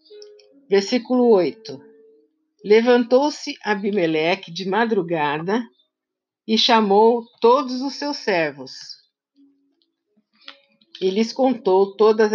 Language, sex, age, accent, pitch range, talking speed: Portuguese, female, 50-69, Brazilian, 190-280 Hz, 80 wpm